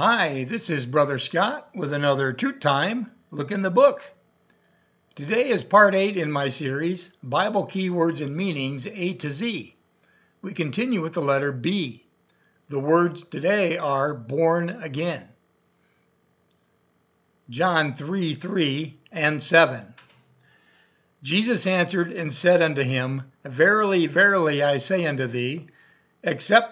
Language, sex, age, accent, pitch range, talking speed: English, male, 60-79, American, 140-190 Hz, 130 wpm